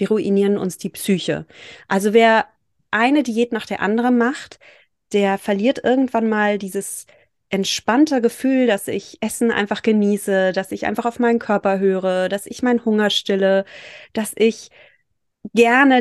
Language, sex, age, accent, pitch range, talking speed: German, female, 30-49, German, 195-245 Hz, 145 wpm